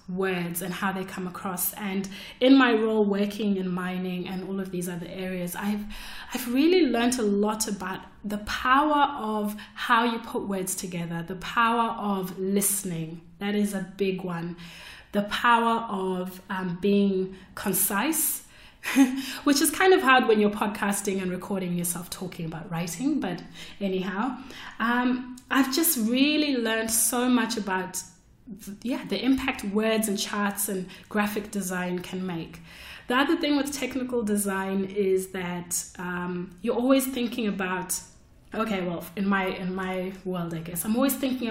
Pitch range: 185-225 Hz